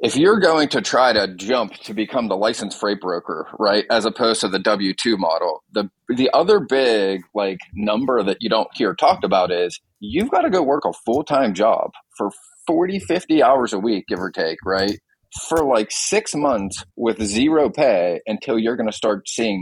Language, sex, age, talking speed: English, male, 30-49, 195 wpm